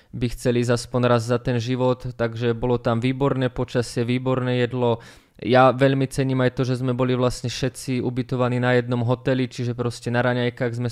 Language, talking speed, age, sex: Slovak, 180 wpm, 20-39, male